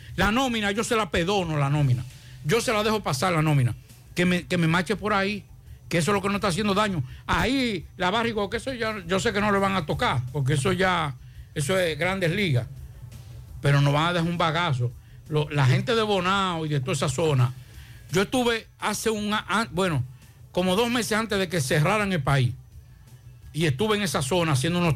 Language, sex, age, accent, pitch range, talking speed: Spanish, male, 60-79, American, 135-200 Hz, 215 wpm